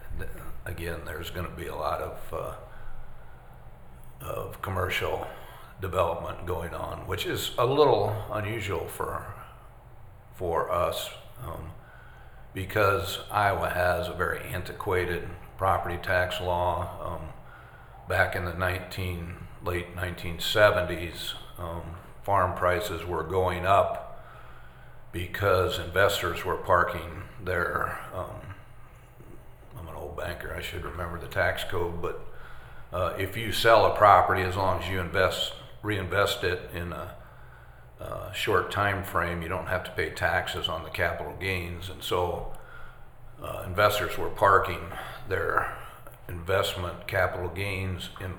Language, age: English, 50-69